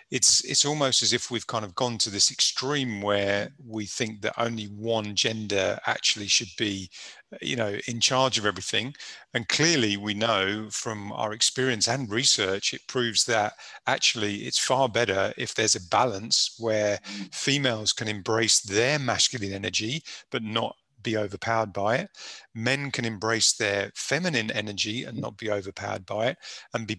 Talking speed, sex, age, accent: 165 wpm, male, 40-59, British